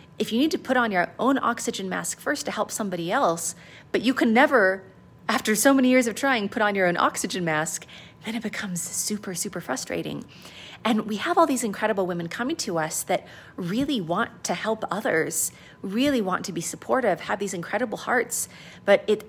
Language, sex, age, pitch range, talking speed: English, female, 30-49, 180-235 Hz, 200 wpm